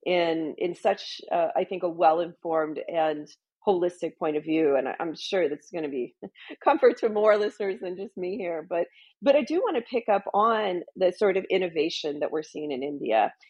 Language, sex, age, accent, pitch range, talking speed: English, female, 40-59, American, 165-210 Hz, 215 wpm